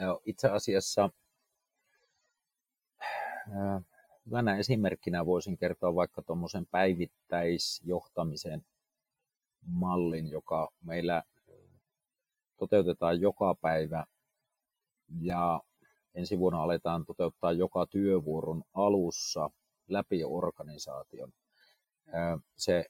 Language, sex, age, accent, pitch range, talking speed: Finnish, male, 40-59, native, 85-95 Hz, 70 wpm